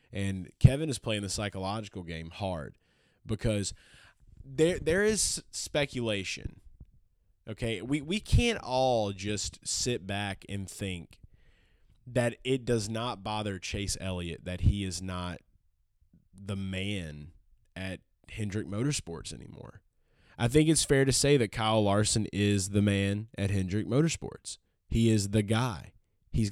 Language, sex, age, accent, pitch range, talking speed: English, male, 20-39, American, 95-125 Hz, 135 wpm